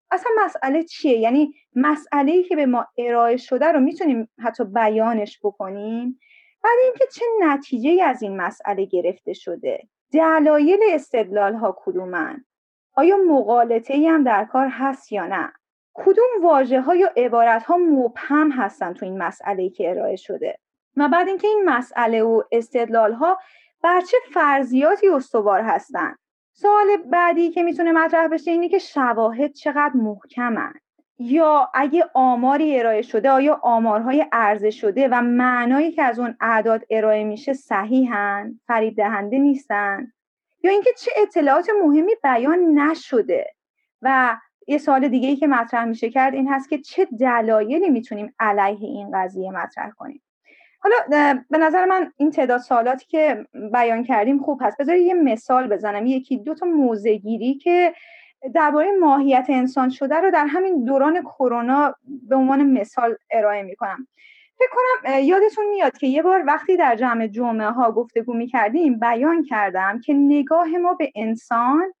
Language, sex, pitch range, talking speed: Persian, female, 235-330 Hz, 150 wpm